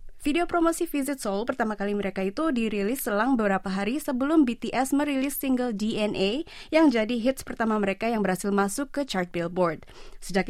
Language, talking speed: Indonesian, 165 wpm